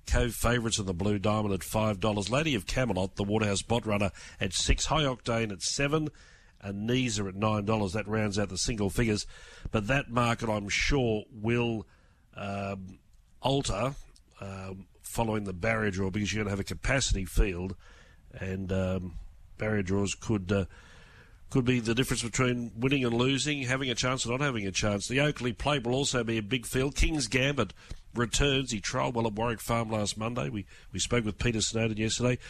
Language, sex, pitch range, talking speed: English, male, 100-125 Hz, 185 wpm